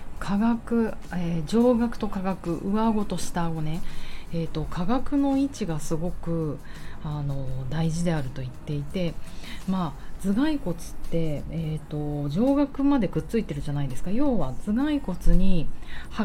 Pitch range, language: 145-220 Hz, Japanese